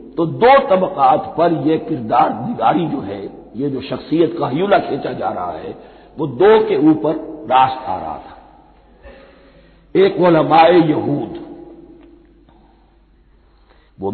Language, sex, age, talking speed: Hindi, male, 60-79, 125 wpm